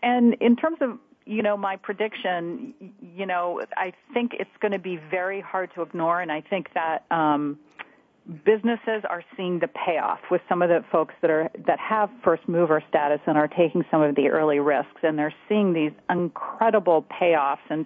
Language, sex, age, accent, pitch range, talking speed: English, female, 40-59, American, 160-210 Hz, 190 wpm